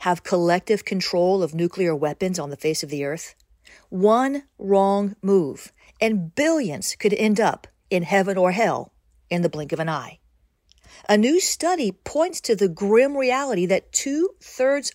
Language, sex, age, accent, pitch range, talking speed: English, female, 50-69, American, 170-240 Hz, 160 wpm